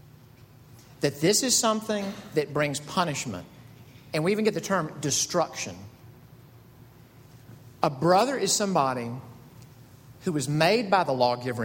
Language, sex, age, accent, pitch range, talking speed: English, male, 50-69, American, 125-170 Hz, 125 wpm